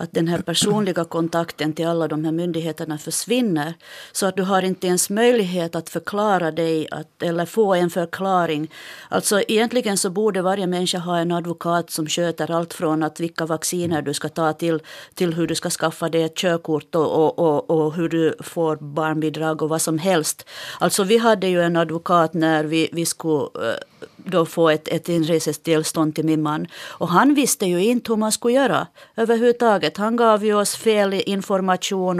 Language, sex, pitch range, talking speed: Finnish, female, 165-215 Hz, 175 wpm